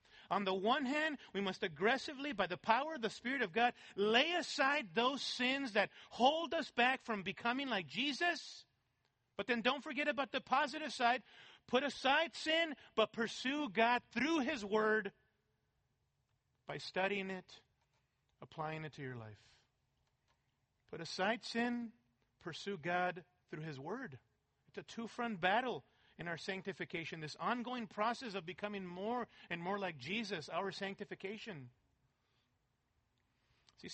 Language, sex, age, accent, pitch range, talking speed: English, male, 40-59, American, 180-265 Hz, 140 wpm